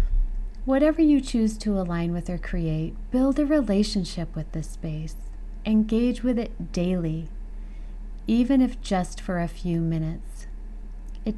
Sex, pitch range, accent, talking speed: female, 165-215 Hz, American, 135 wpm